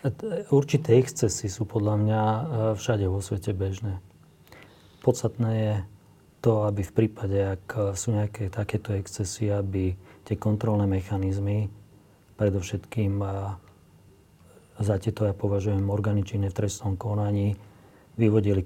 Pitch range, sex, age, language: 100-110 Hz, male, 40-59, Slovak